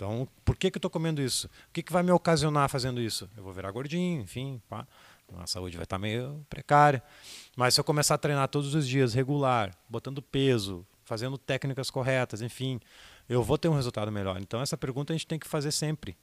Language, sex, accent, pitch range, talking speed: Portuguese, male, Brazilian, 110-140 Hz, 225 wpm